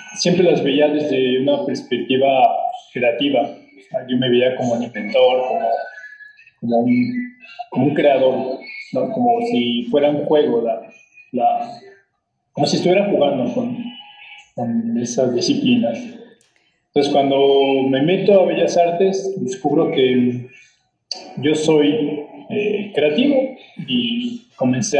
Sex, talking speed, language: male, 110 wpm, Spanish